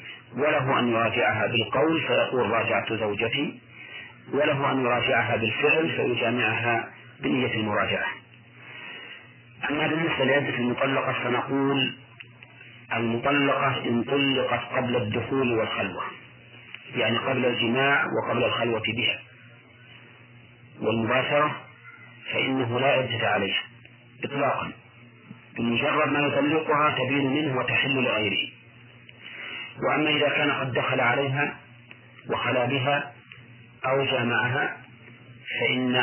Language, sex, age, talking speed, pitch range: Arabic, male, 40-59, 95 wpm, 120-135 Hz